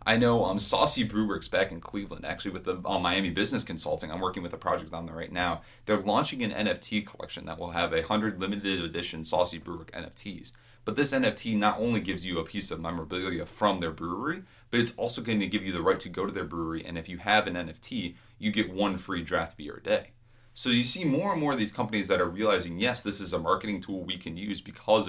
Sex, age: male, 30-49